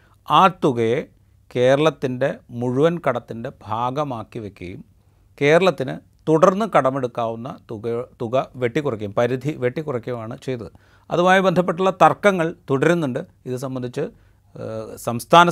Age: 30-49